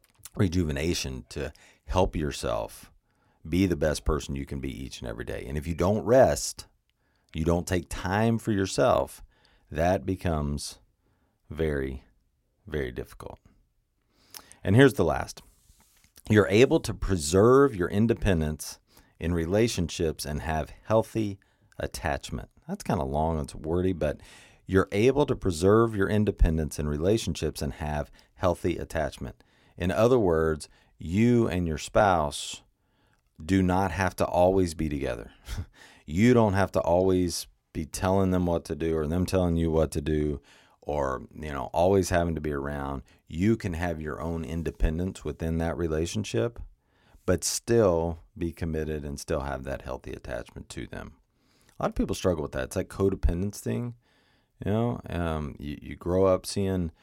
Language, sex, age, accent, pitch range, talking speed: English, male, 40-59, American, 75-100 Hz, 155 wpm